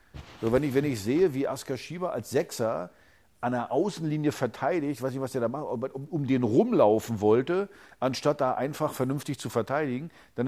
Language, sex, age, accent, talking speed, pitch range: German, male, 50-69, German, 190 wpm, 100-125 Hz